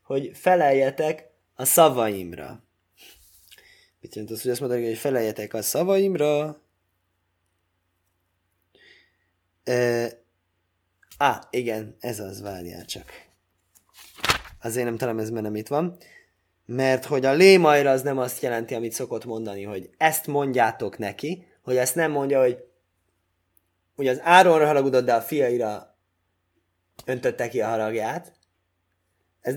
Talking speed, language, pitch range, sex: 120 wpm, Hungarian, 110-155 Hz, male